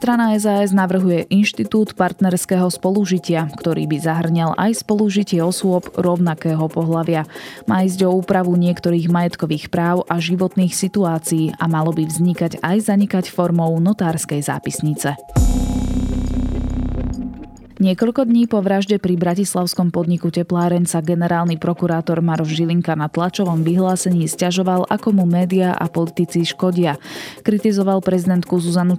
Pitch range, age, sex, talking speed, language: 160-185 Hz, 20-39, female, 120 wpm, Slovak